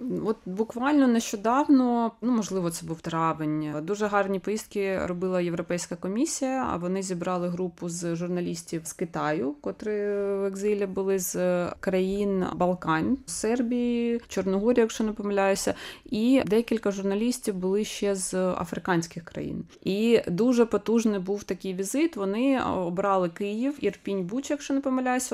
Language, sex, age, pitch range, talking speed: Russian, female, 20-39, 185-230 Hz, 135 wpm